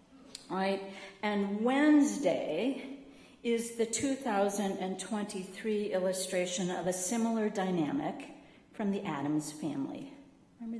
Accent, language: American, English